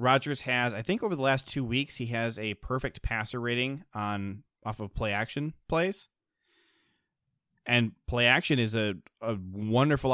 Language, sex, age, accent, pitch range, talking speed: English, male, 20-39, American, 105-130 Hz, 155 wpm